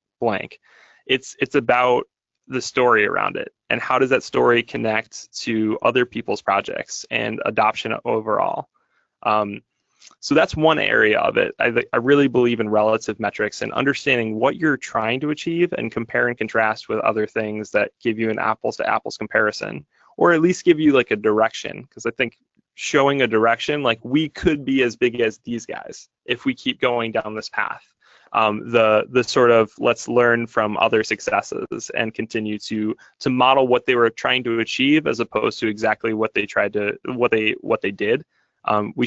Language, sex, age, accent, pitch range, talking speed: English, male, 20-39, American, 110-140 Hz, 185 wpm